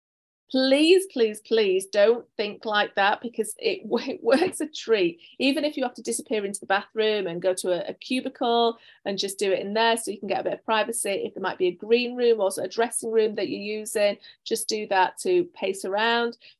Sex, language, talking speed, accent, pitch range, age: female, English, 225 wpm, British, 190-260 Hz, 40-59